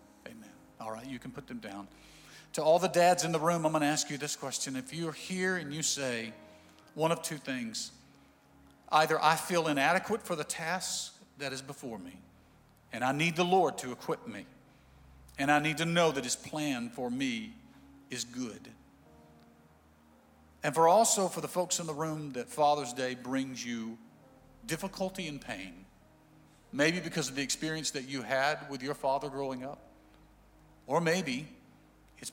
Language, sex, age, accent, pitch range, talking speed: English, male, 50-69, American, 115-165 Hz, 175 wpm